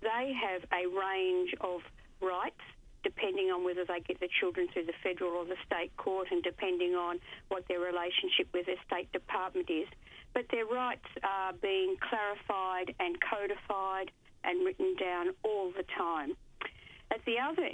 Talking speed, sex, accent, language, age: 160 wpm, female, Australian, English, 40-59